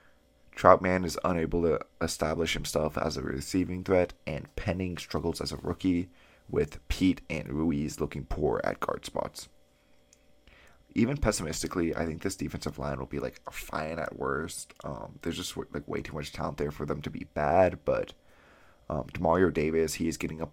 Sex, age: male, 30-49